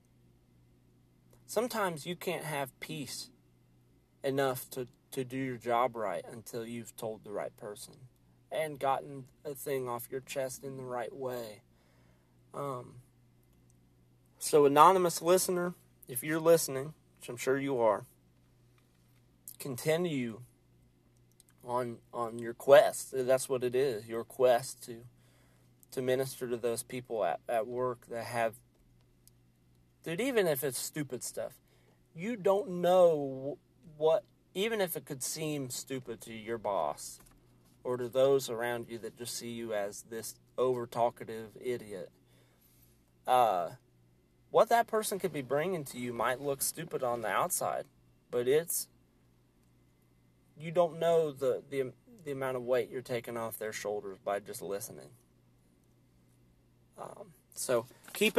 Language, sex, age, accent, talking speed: English, male, 40-59, American, 135 wpm